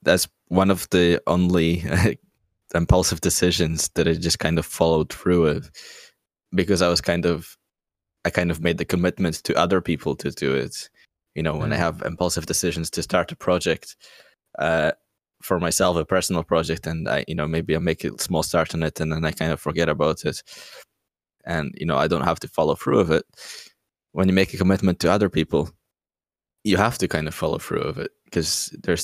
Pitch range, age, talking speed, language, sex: 80-90 Hz, 20-39, 205 wpm, English, male